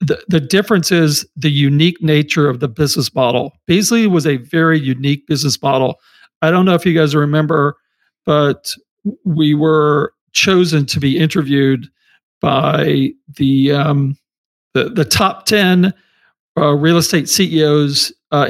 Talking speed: 145 wpm